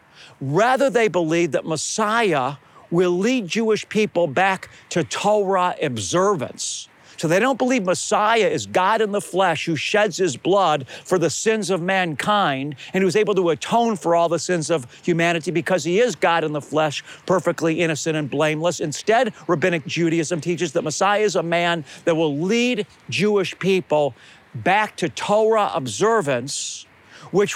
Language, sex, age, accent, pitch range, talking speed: English, male, 50-69, American, 160-205 Hz, 160 wpm